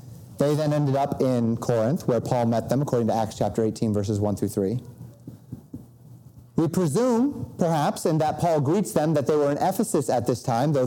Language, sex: English, male